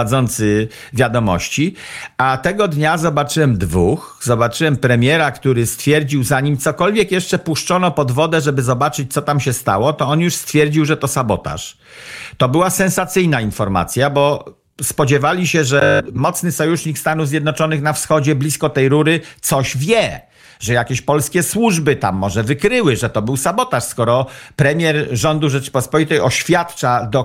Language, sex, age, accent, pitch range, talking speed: Polish, male, 50-69, native, 130-165 Hz, 145 wpm